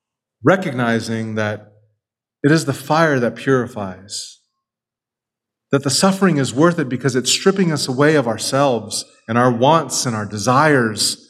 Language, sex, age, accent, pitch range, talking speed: English, male, 30-49, American, 115-145 Hz, 145 wpm